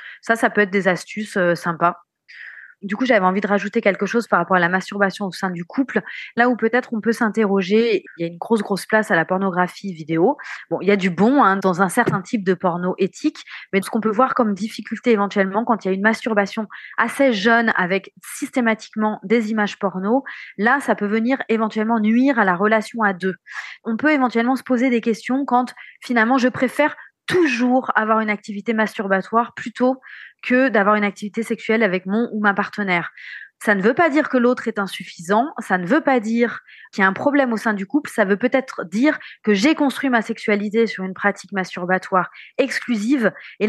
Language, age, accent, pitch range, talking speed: French, 20-39, French, 200-250 Hz, 210 wpm